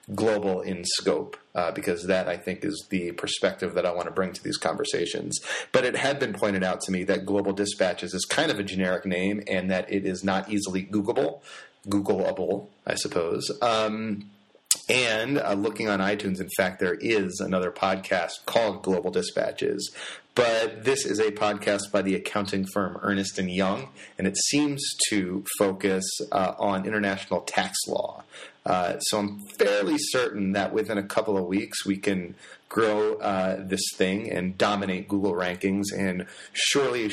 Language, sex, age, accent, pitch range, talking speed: English, male, 30-49, American, 95-105 Hz, 170 wpm